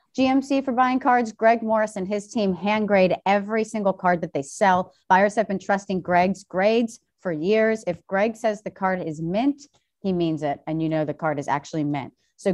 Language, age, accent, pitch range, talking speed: English, 30-49, American, 165-205 Hz, 210 wpm